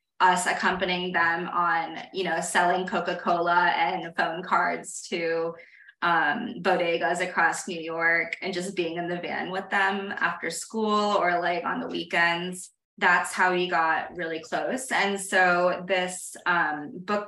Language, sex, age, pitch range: English, female, 20-39, 170-195 Hz